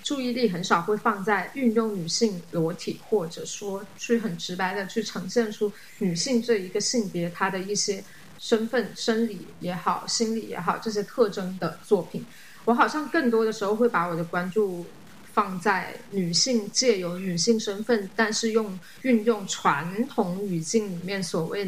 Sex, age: female, 20-39